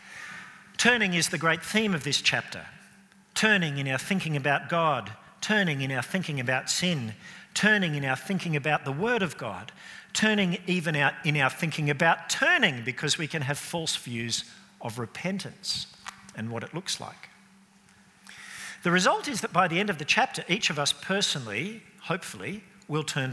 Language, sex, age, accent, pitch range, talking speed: English, male, 50-69, Australian, 130-190 Hz, 170 wpm